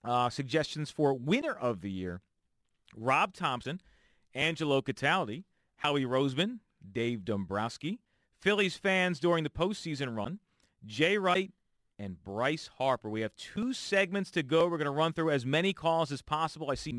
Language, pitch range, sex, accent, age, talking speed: English, 120-175 Hz, male, American, 40-59, 155 wpm